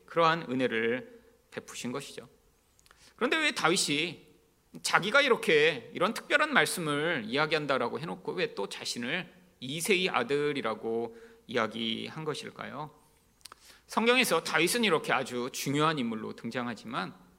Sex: male